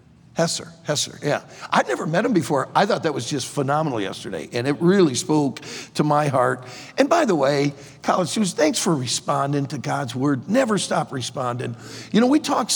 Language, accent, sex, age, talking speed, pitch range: English, American, male, 50-69, 195 wpm, 145-195 Hz